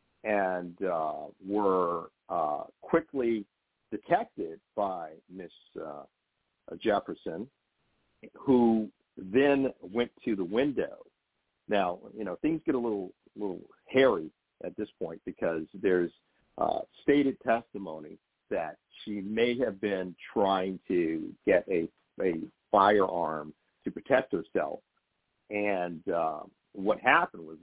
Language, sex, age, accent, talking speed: English, male, 50-69, American, 115 wpm